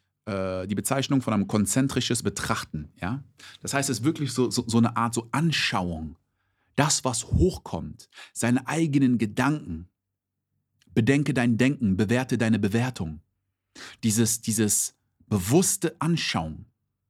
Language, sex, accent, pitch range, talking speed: German, male, German, 100-130 Hz, 115 wpm